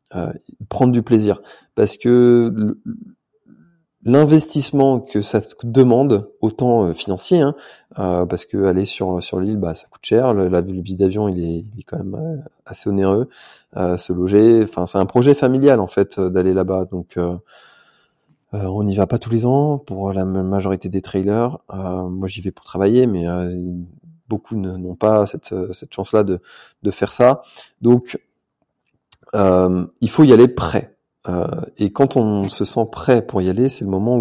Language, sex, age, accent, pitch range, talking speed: French, male, 20-39, French, 95-120 Hz, 185 wpm